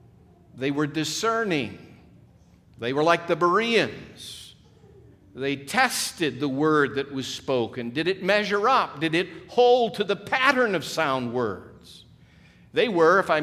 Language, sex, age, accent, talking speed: English, male, 50-69, American, 145 wpm